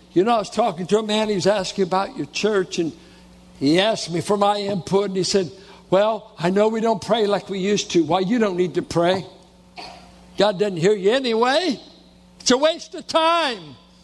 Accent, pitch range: American, 175-245 Hz